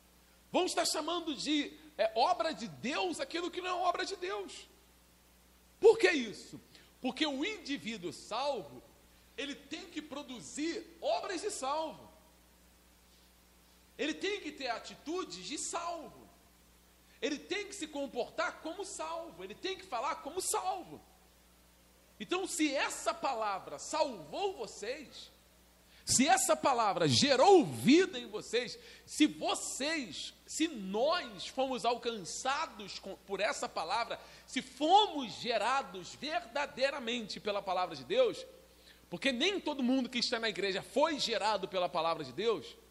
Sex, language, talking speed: male, Portuguese, 130 wpm